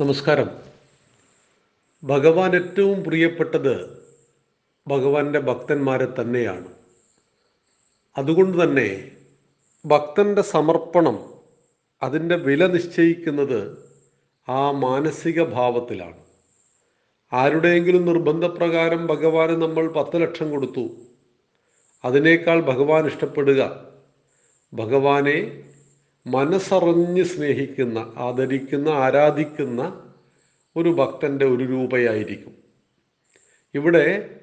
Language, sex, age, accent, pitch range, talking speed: Malayalam, male, 40-59, native, 130-165 Hz, 65 wpm